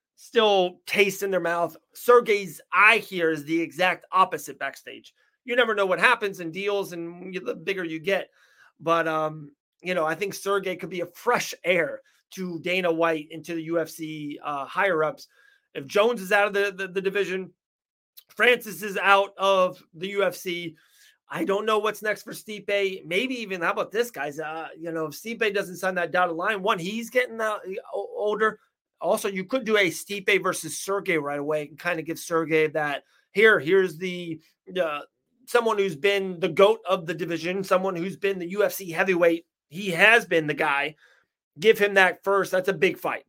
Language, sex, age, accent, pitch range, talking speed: English, male, 30-49, American, 170-205 Hz, 190 wpm